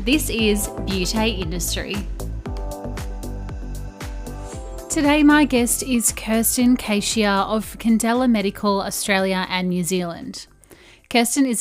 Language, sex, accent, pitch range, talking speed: English, female, Australian, 195-245 Hz, 100 wpm